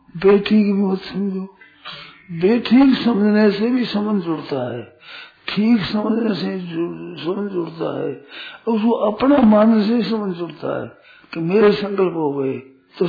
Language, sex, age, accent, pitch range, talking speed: Hindi, male, 60-79, native, 165-220 Hz, 135 wpm